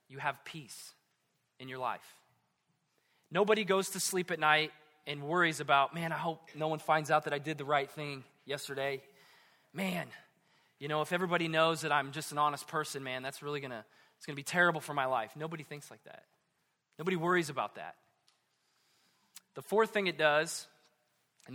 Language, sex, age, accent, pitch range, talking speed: English, male, 20-39, American, 150-190 Hz, 190 wpm